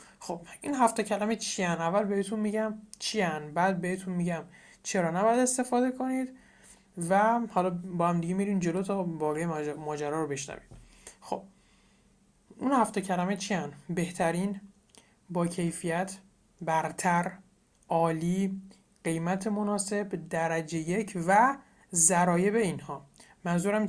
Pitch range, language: 170-210 Hz, Persian